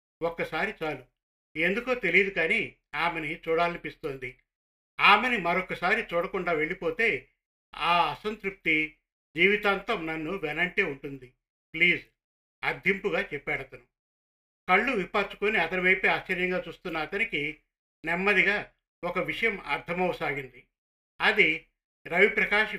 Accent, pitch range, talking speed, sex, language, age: native, 155-200 Hz, 85 wpm, male, Telugu, 50-69